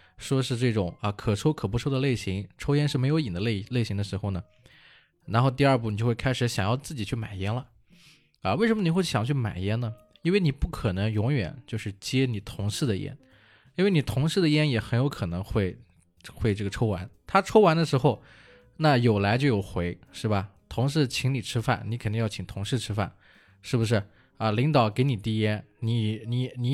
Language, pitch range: Chinese, 105-135 Hz